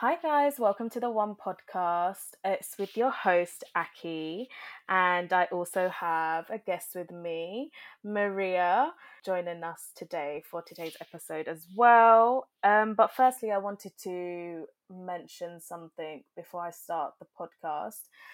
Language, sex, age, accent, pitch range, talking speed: English, female, 20-39, British, 170-205 Hz, 135 wpm